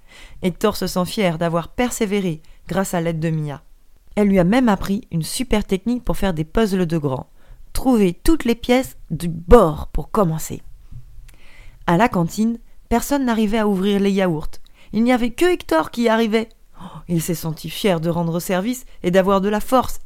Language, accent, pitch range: French, French, 170-225 Hz